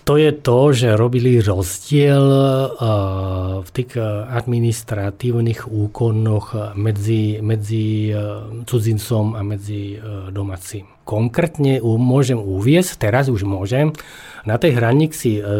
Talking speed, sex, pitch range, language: 95 wpm, male, 105-135 Hz, Slovak